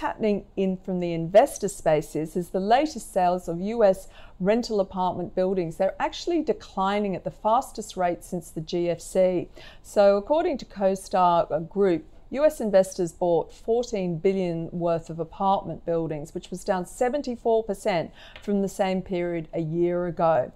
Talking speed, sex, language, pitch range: 145 wpm, female, English, 175-210 Hz